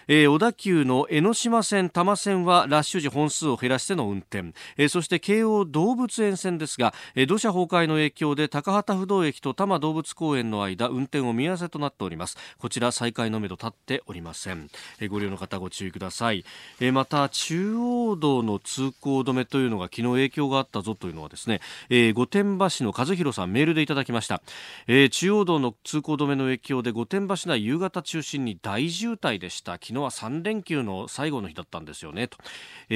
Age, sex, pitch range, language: 40-59, male, 110-170 Hz, Japanese